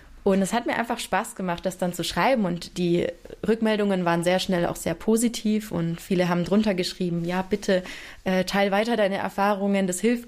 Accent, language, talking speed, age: German, German, 200 wpm, 20-39